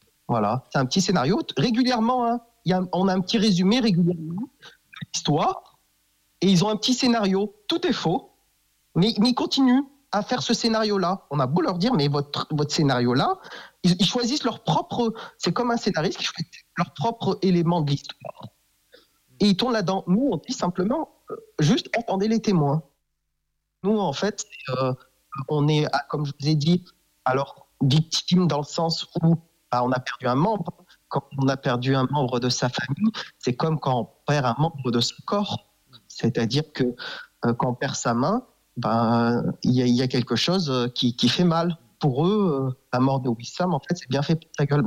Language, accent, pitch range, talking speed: French, French, 130-200 Hz, 200 wpm